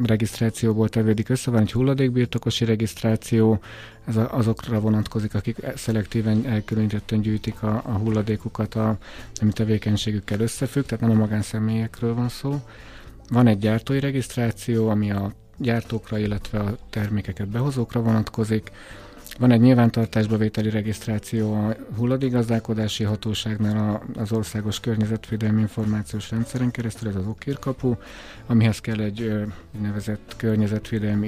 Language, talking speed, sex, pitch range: Hungarian, 125 wpm, male, 105-115 Hz